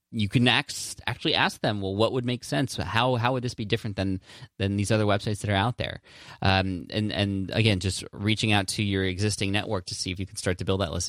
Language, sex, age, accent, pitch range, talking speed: English, male, 20-39, American, 95-115 Hz, 255 wpm